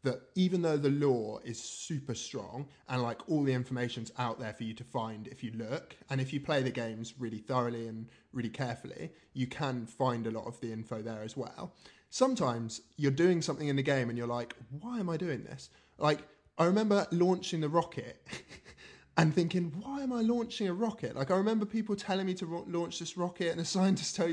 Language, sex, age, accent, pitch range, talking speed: English, male, 20-39, British, 125-175 Hz, 215 wpm